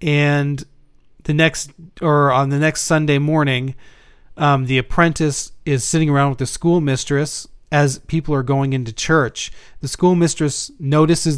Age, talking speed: 40-59, 140 wpm